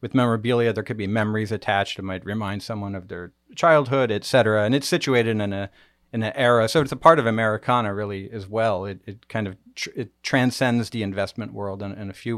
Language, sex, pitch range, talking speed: English, male, 105-125 Hz, 225 wpm